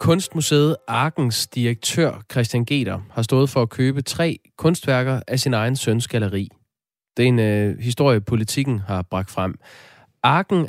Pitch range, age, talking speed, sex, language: 105-135 Hz, 20-39, 150 wpm, male, Danish